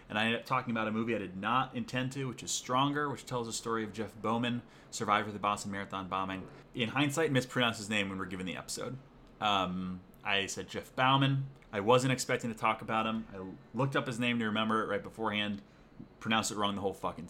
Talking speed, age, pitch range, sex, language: 235 wpm, 30-49, 105-125 Hz, male, English